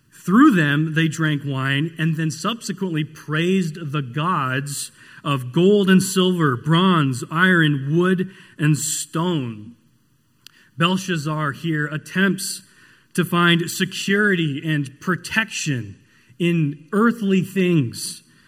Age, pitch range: 40-59, 140-180 Hz